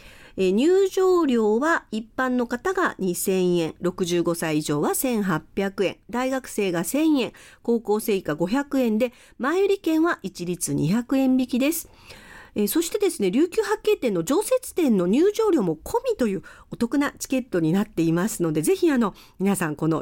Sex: female